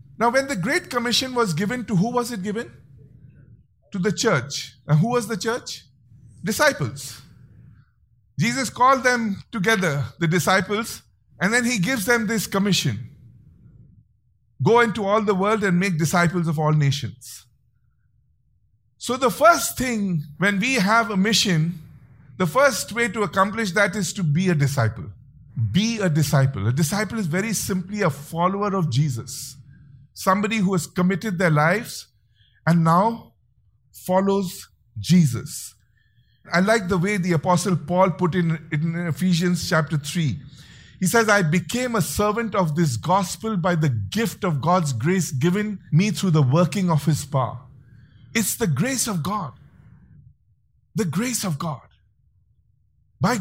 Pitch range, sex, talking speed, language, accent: 130-205 Hz, male, 150 wpm, English, Indian